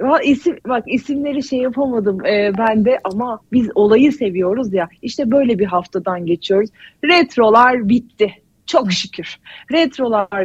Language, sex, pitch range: Turkish, female, 195-265 Hz